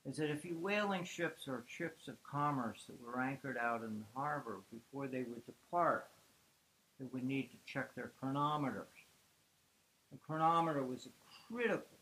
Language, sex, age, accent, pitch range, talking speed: English, male, 60-79, American, 120-150 Hz, 165 wpm